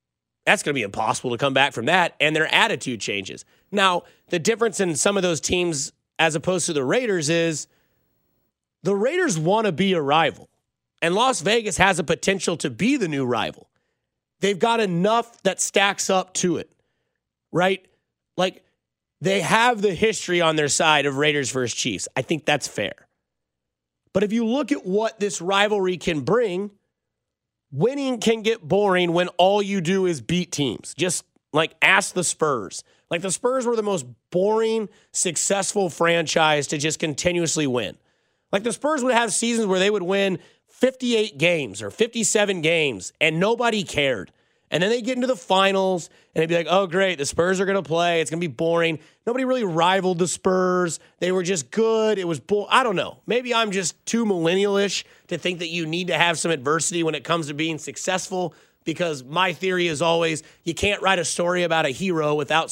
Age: 30-49